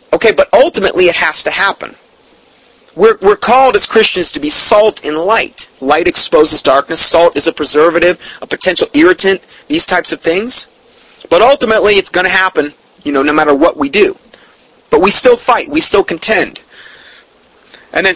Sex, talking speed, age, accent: male, 175 wpm, 30-49, American